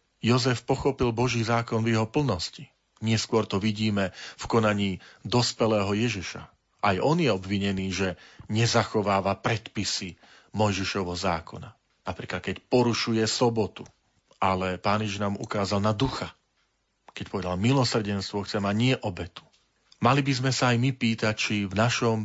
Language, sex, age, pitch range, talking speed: Slovak, male, 40-59, 100-120 Hz, 135 wpm